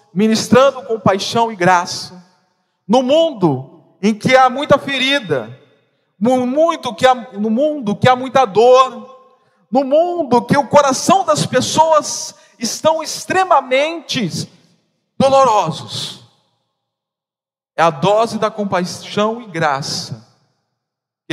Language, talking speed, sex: Portuguese, 110 wpm, male